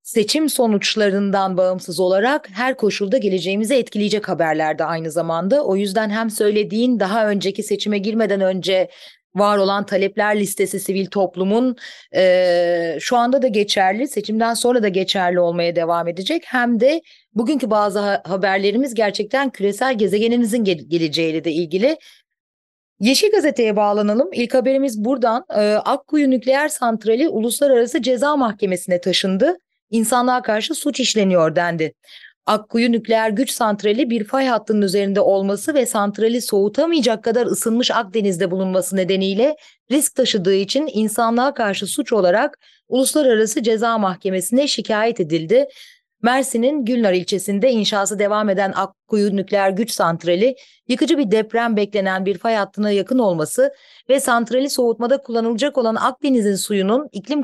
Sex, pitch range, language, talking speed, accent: female, 195-250 Hz, Turkish, 130 wpm, native